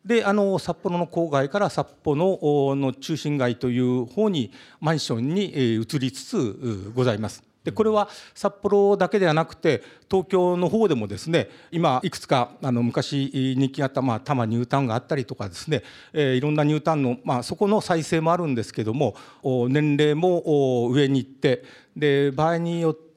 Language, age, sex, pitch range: Japanese, 50-69, male, 130-185 Hz